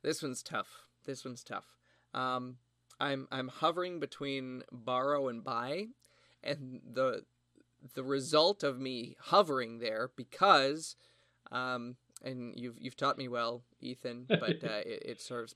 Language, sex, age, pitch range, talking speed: English, male, 30-49, 120-145 Hz, 140 wpm